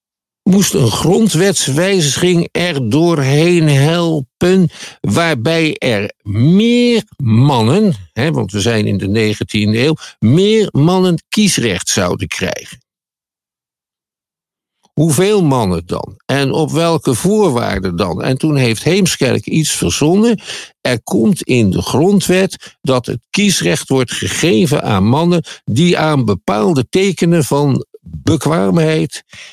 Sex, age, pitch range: male, 50-69, 120-175 Hz